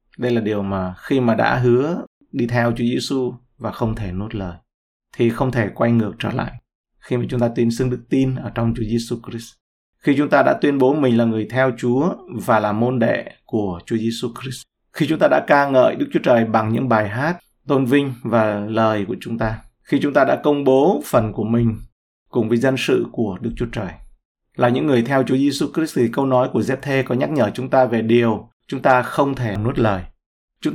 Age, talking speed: 20-39, 230 wpm